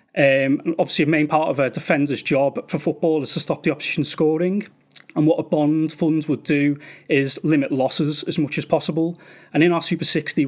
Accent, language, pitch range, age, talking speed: British, English, 145-170 Hz, 30-49, 205 wpm